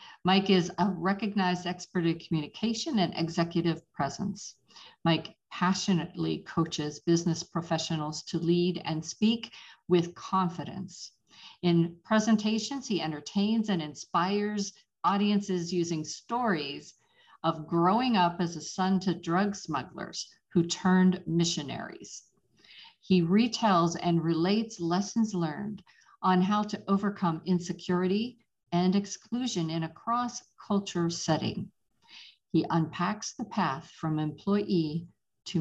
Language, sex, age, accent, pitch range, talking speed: English, female, 50-69, American, 160-200 Hz, 110 wpm